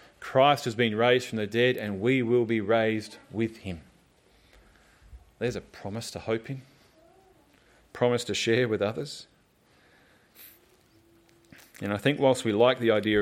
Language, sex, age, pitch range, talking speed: English, male, 30-49, 100-130 Hz, 155 wpm